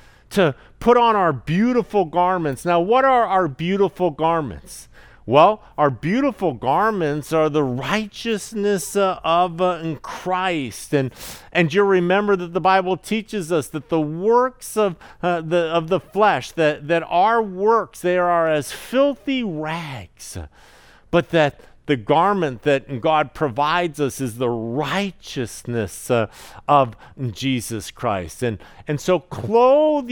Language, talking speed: English, 140 wpm